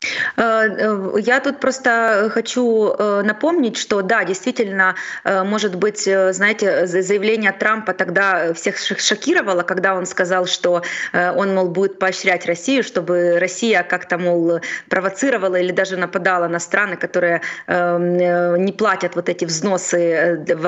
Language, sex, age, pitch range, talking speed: Ukrainian, female, 20-39, 180-215 Hz, 120 wpm